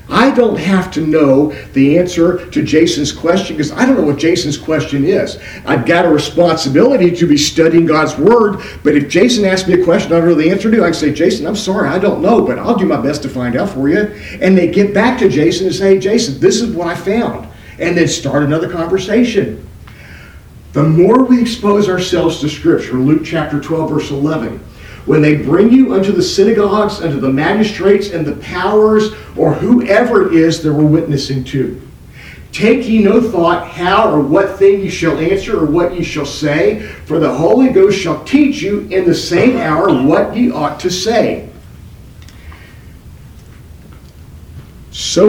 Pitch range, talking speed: 145-195 Hz, 190 wpm